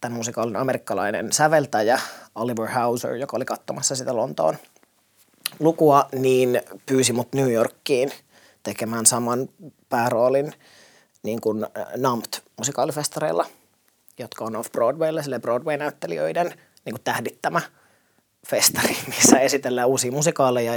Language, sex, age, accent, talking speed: Finnish, male, 30-49, native, 100 wpm